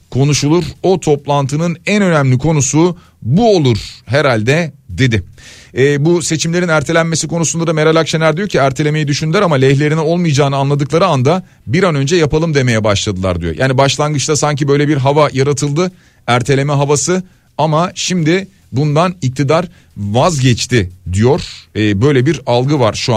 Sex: male